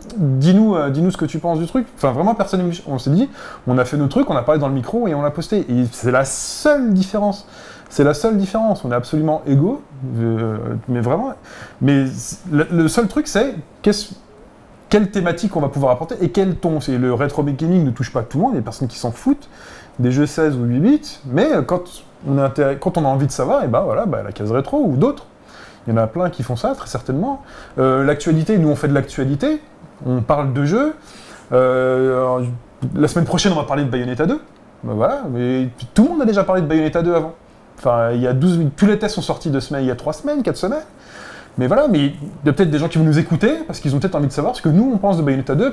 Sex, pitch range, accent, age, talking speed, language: male, 135-185 Hz, French, 30-49, 255 wpm, French